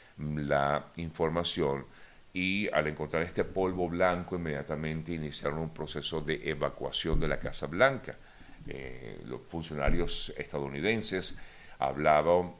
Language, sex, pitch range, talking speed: Spanish, male, 70-85 Hz, 110 wpm